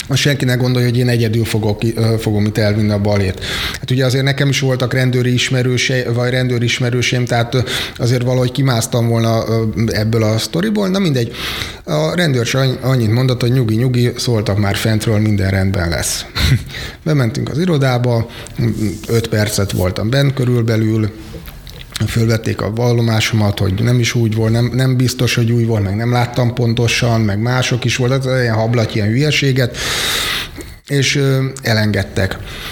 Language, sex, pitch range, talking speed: Hungarian, male, 105-125 Hz, 155 wpm